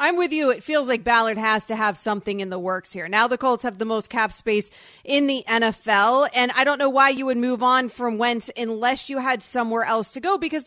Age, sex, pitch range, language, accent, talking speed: 30-49, female, 215-255 Hz, English, American, 255 wpm